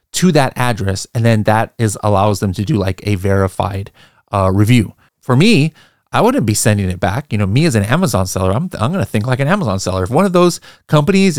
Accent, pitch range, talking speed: American, 105-140 Hz, 235 wpm